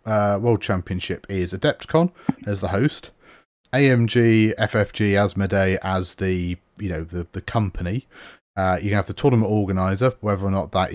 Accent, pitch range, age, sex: British, 90-105 Hz, 30-49, male